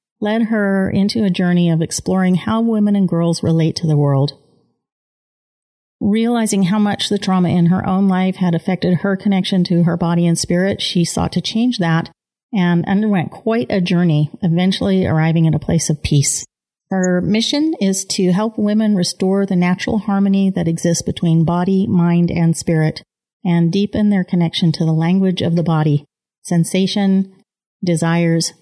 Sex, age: female, 40-59